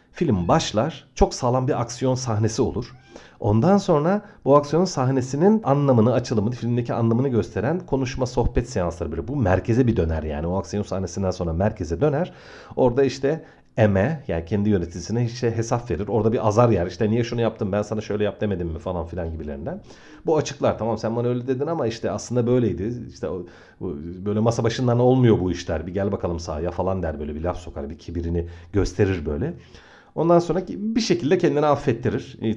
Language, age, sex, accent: Turkish, 40-59, male, native